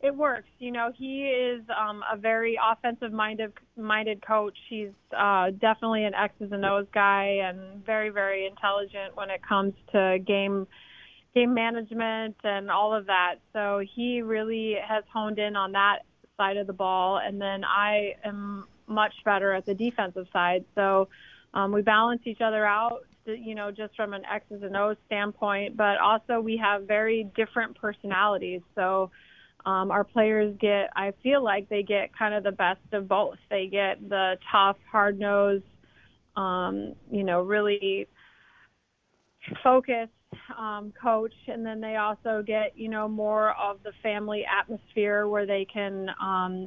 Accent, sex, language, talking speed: American, female, English, 160 wpm